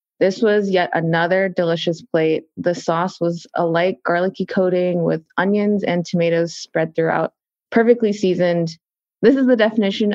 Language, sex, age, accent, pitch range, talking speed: English, female, 20-39, American, 175-205 Hz, 150 wpm